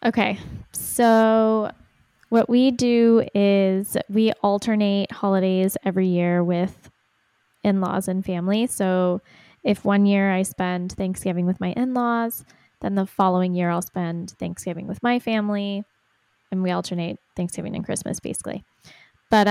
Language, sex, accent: English, female, American